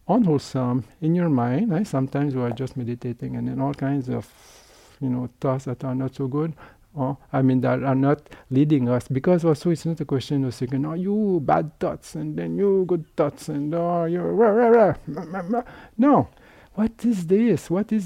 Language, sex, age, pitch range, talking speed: English, male, 50-69, 130-165 Hz, 215 wpm